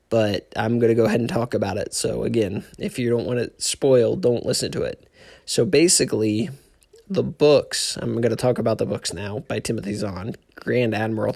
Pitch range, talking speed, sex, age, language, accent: 105-120 Hz, 205 wpm, male, 20-39, English, American